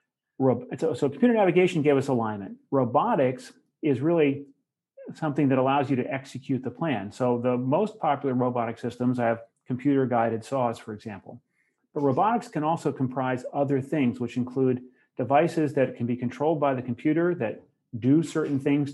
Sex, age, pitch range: male, 40-59, 120-145 Hz